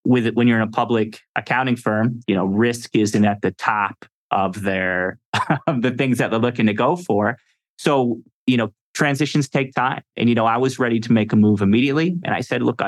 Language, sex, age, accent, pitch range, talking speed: English, male, 30-49, American, 105-125 Hz, 220 wpm